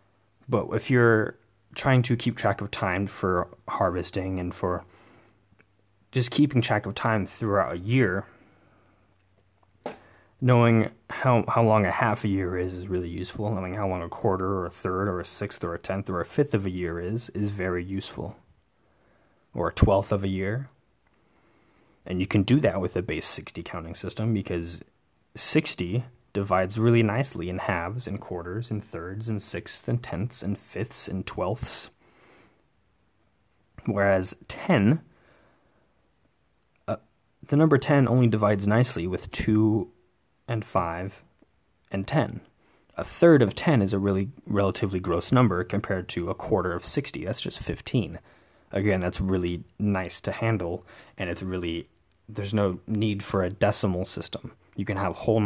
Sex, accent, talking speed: male, American, 160 wpm